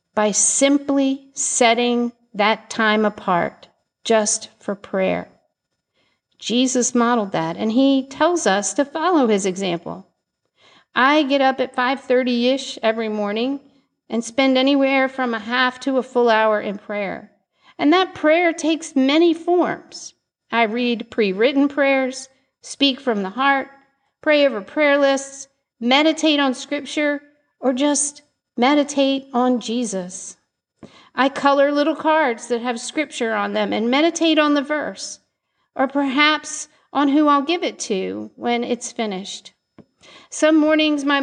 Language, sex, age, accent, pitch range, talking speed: English, female, 50-69, American, 230-290 Hz, 135 wpm